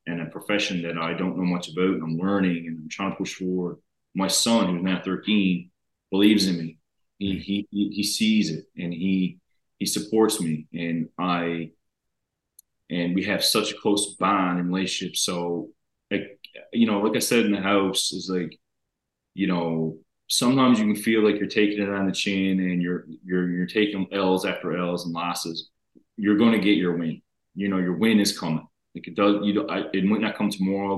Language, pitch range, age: English, 85-100 Hz, 30-49